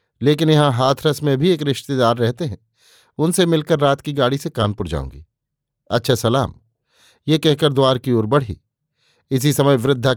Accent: native